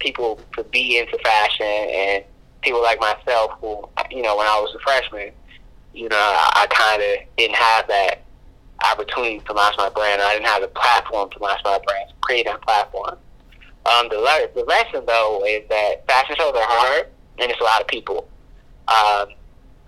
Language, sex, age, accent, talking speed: English, male, 20-39, American, 180 wpm